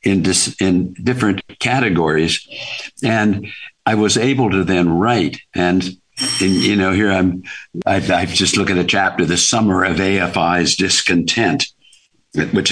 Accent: American